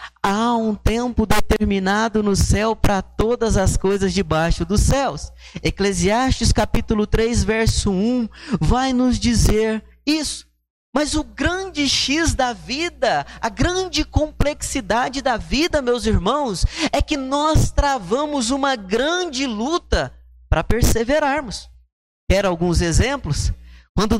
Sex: male